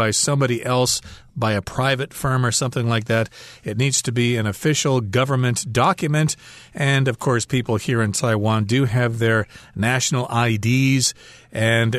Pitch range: 115-140 Hz